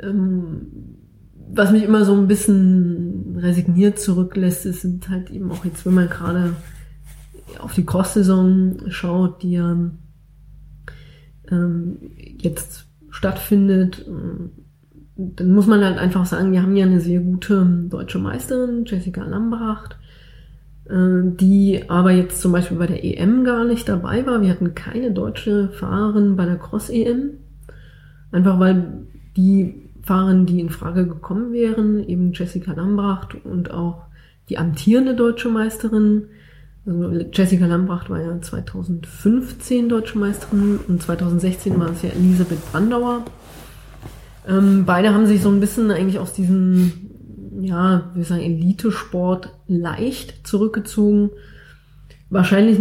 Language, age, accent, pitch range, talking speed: German, 20-39, German, 170-200 Hz, 125 wpm